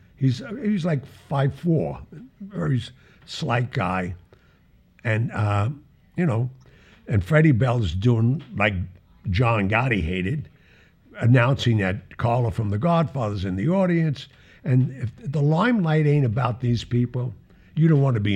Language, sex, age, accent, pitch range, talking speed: English, male, 60-79, American, 100-140 Hz, 135 wpm